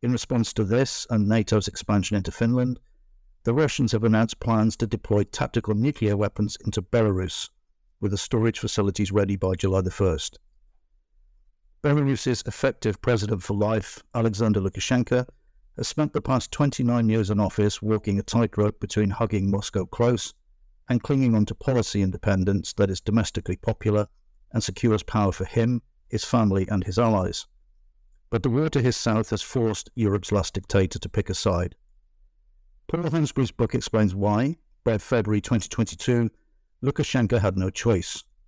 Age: 60-79